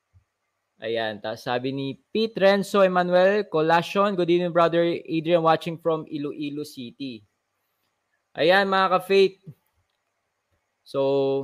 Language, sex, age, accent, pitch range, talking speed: Filipino, male, 20-39, native, 120-155 Hz, 105 wpm